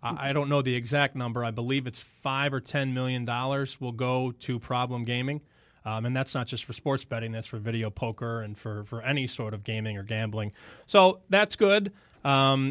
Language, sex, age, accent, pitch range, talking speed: English, male, 30-49, American, 120-145 Hz, 205 wpm